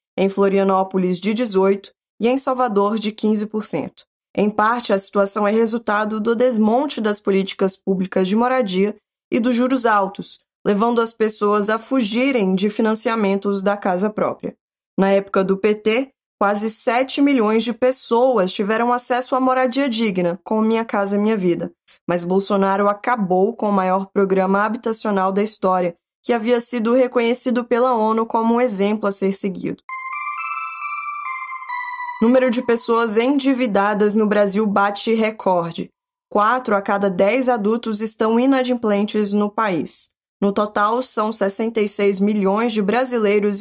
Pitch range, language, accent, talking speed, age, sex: 195-240 Hz, Portuguese, Brazilian, 140 wpm, 20-39, female